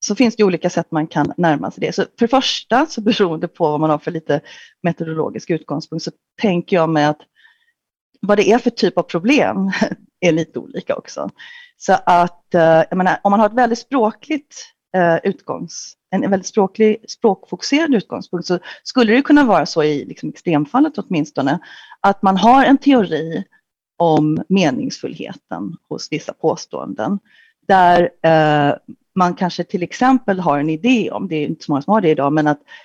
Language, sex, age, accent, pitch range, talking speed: Swedish, female, 40-59, native, 160-230 Hz, 175 wpm